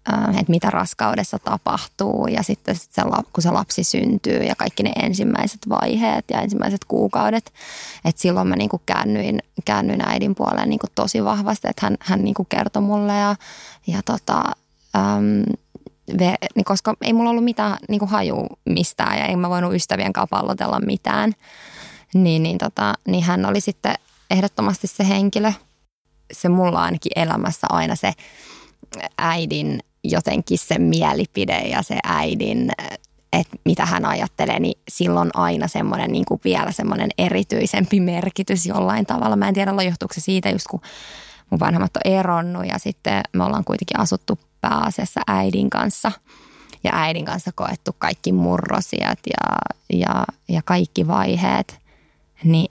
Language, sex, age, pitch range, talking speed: English, female, 20-39, 175-215 Hz, 140 wpm